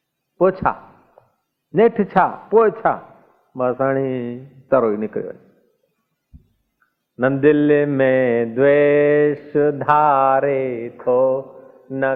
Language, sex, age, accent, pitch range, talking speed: Hindi, male, 50-69, native, 130-190 Hz, 55 wpm